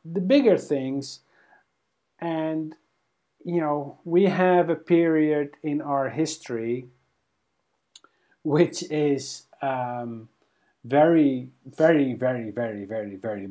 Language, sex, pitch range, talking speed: English, male, 125-150 Hz, 100 wpm